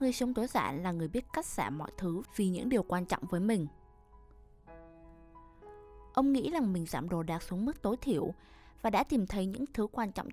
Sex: female